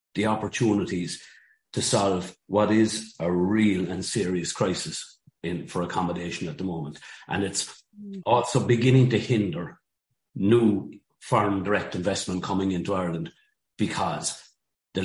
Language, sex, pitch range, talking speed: English, male, 90-105 Hz, 130 wpm